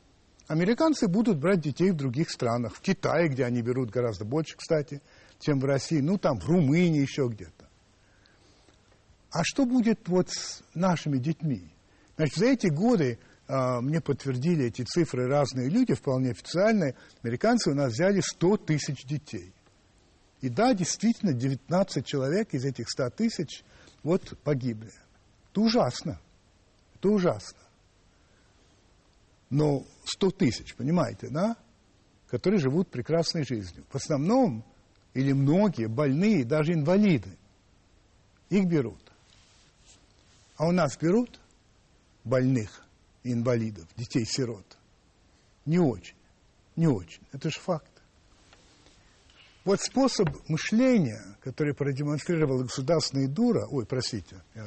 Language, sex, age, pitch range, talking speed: Russian, male, 60-79, 105-165 Hz, 115 wpm